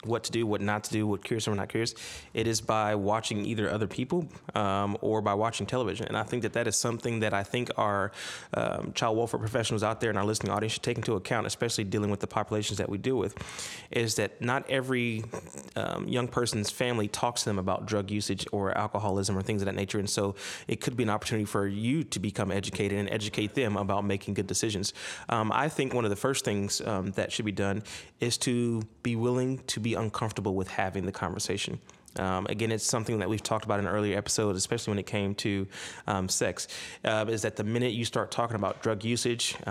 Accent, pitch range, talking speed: American, 100-115 Hz, 230 wpm